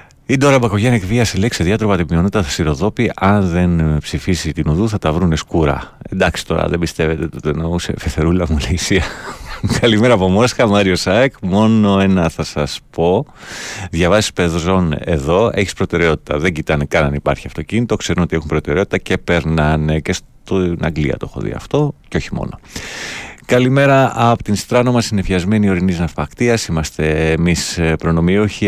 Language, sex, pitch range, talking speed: Greek, male, 80-105 Hz, 160 wpm